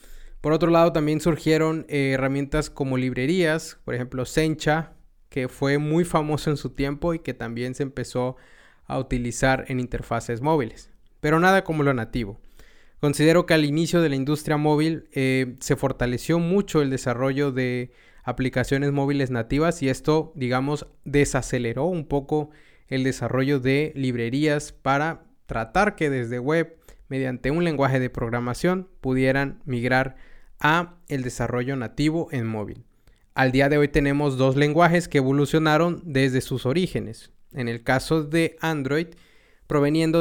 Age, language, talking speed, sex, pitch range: 20-39, Spanish, 145 wpm, male, 130-155 Hz